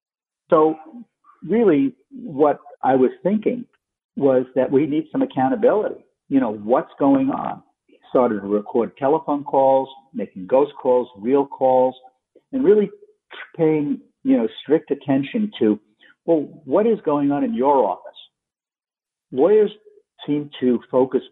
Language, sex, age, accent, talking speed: English, male, 50-69, American, 130 wpm